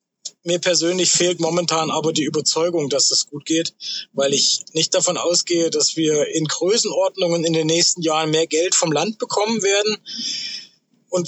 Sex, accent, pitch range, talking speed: male, German, 155-205 Hz, 170 wpm